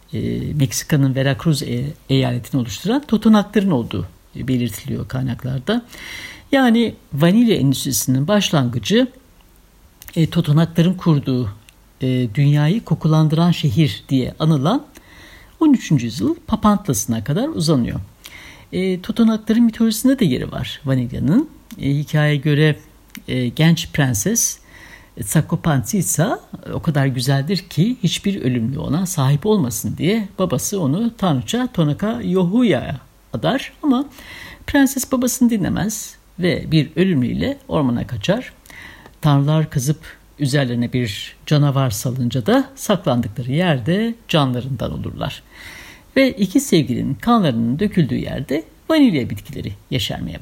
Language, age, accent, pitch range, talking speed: Turkish, 60-79, native, 135-215 Hz, 105 wpm